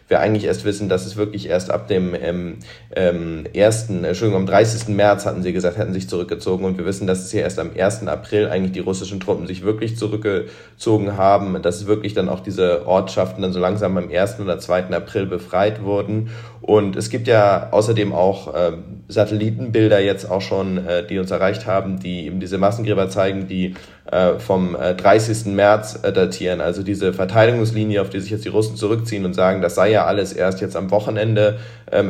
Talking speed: 200 wpm